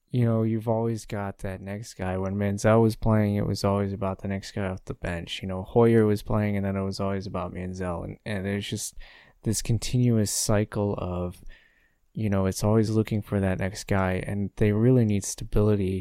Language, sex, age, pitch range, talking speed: English, male, 20-39, 95-110 Hz, 210 wpm